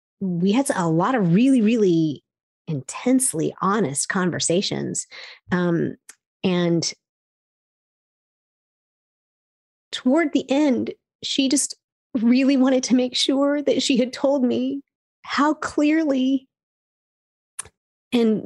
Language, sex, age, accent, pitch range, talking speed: English, female, 30-49, American, 200-275 Hz, 100 wpm